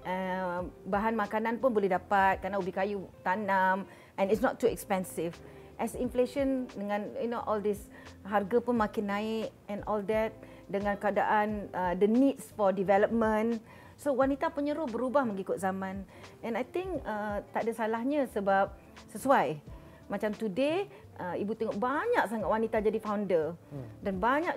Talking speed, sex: 150 wpm, female